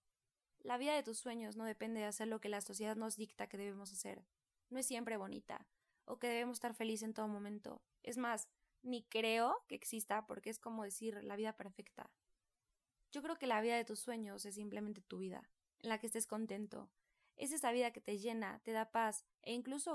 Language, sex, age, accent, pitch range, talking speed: Spanish, female, 20-39, Mexican, 210-245 Hz, 215 wpm